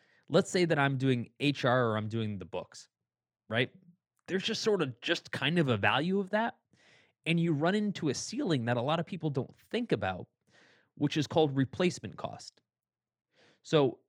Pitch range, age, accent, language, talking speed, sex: 115-160 Hz, 30-49, American, English, 185 wpm, male